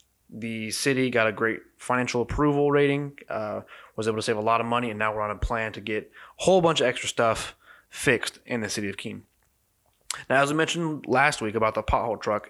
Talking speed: 225 wpm